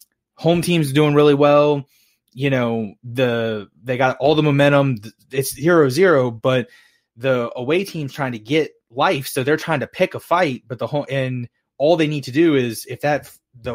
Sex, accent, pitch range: male, American, 120-155 Hz